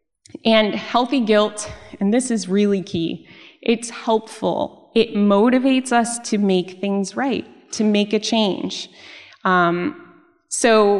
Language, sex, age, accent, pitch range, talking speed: English, female, 20-39, American, 185-225 Hz, 125 wpm